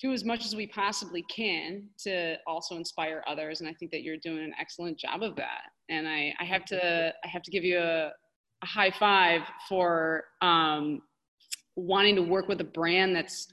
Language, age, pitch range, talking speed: English, 30-49, 160-200 Hz, 200 wpm